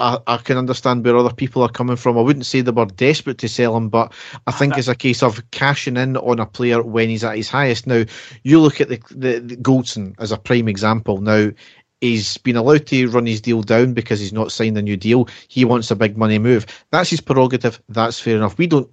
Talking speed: 245 wpm